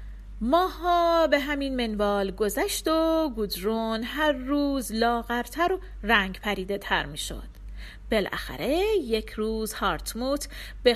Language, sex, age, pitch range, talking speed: Persian, female, 40-59, 230-355 Hz, 110 wpm